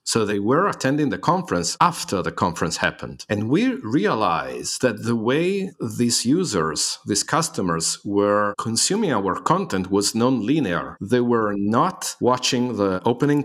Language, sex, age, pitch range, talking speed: English, male, 50-69, 105-135 Hz, 145 wpm